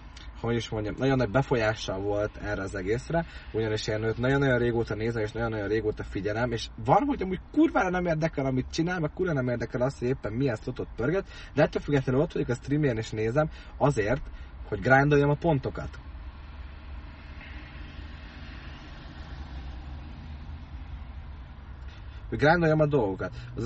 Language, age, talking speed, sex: Hungarian, 20-39, 145 wpm, male